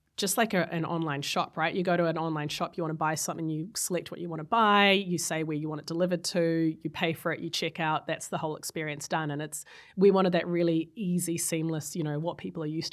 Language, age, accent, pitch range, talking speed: English, 20-39, Australian, 155-175 Hz, 270 wpm